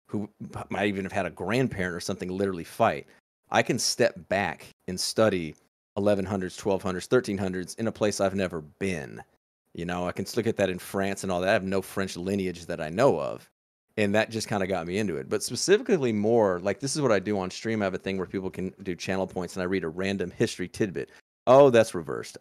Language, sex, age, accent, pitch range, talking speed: English, male, 30-49, American, 90-110 Hz, 235 wpm